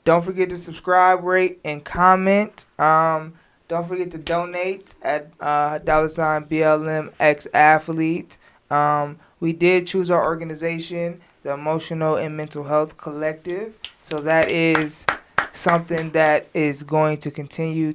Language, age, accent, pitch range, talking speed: English, 20-39, American, 150-170 Hz, 135 wpm